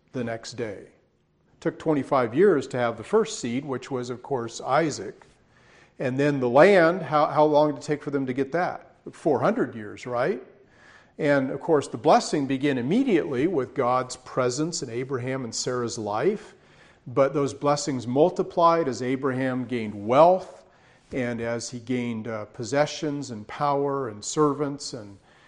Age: 40-59